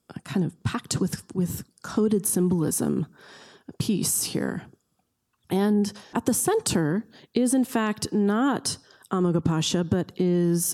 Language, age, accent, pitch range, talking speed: English, 30-49, American, 160-200 Hz, 110 wpm